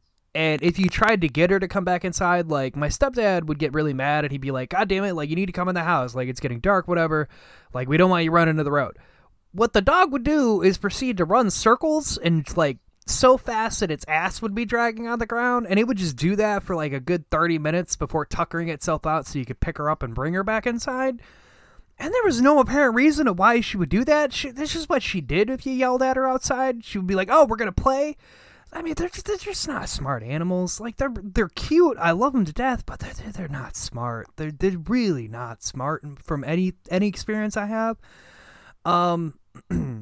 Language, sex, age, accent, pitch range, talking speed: English, male, 20-39, American, 155-235 Hz, 245 wpm